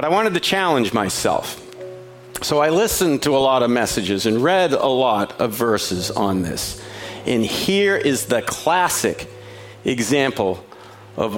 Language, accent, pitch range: English, American, 125-180 Hz